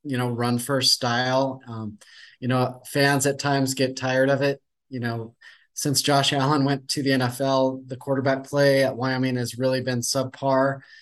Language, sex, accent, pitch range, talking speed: English, male, American, 125-140 Hz, 180 wpm